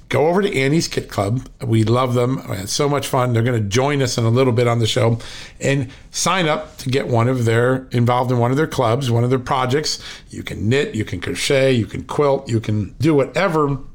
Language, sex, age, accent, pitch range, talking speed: English, male, 50-69, American, 115-135 Hz, 245 wpm